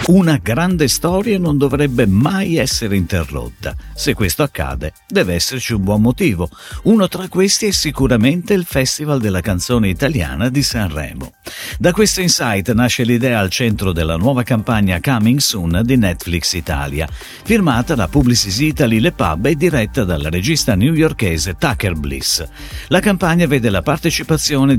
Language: Italian